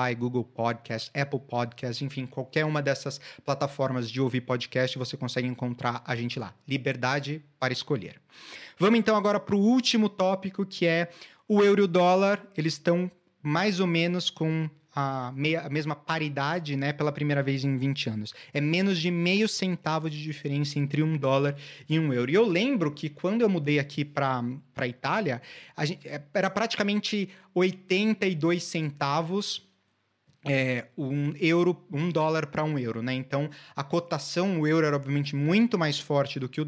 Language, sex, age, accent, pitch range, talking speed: Portuguese, male, 30-49, Brazilian, 135-175 Hz, 160 wpm